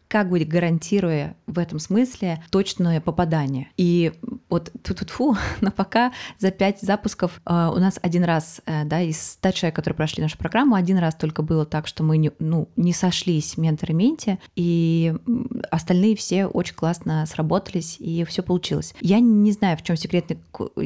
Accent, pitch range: native, 160-190 Hz